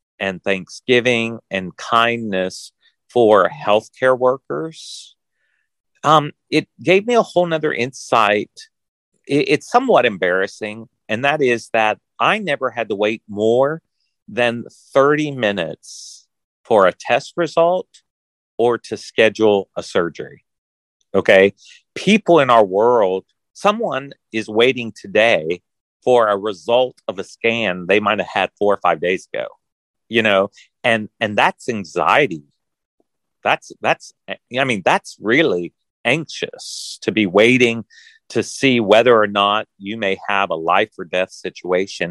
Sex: male